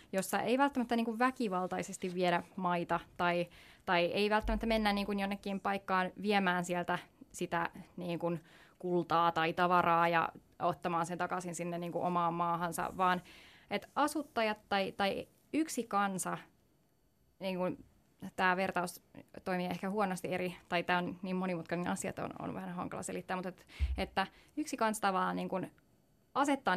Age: 20-39